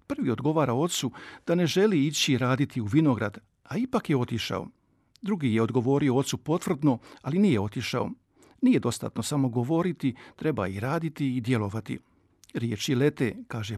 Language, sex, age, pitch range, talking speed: Croatian, male, 50-69, 120-165 Hz, 150 wpm